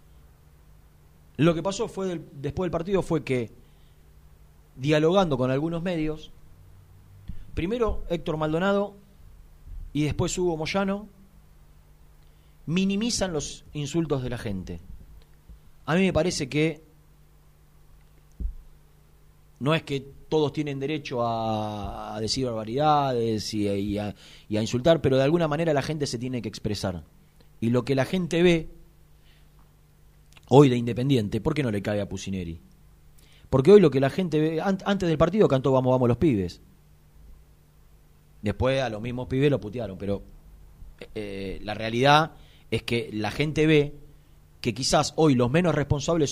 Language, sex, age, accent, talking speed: Spanish, male, 40-59, Argentinian, 145 wpm